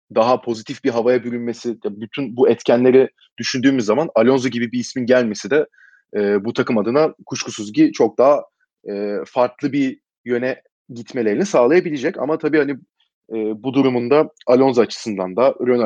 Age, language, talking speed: 30-49, Turkish, 150 wpm